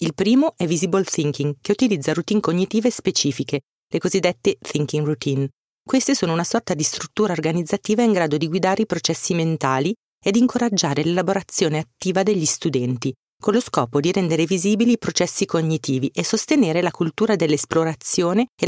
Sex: female